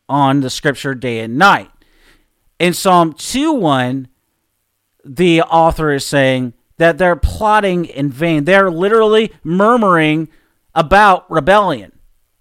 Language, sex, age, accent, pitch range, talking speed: English, male, 50-69, American, 145-195 Hz, 115 wpm